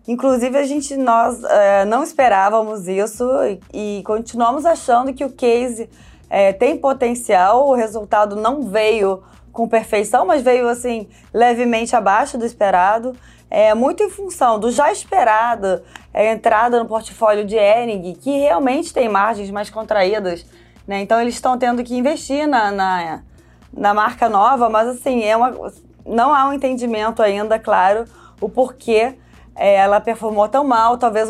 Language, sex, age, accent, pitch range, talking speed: Portuguese, female, 20-39, Brazilian, 205-250 Hz, 150 wpm